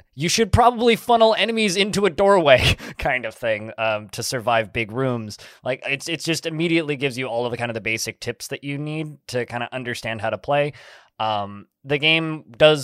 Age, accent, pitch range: 20-39, American, 110-140 Hz